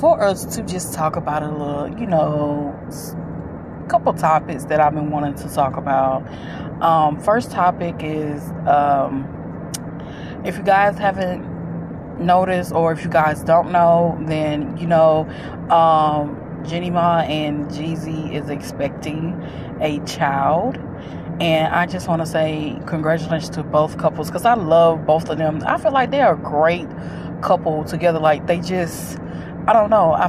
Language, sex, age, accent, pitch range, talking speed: English, female, 20-39, American, 155-175 Hz, 155 wpm